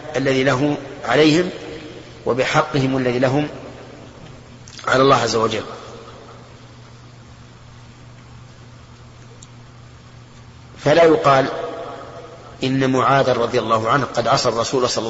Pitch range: 120-140 Hz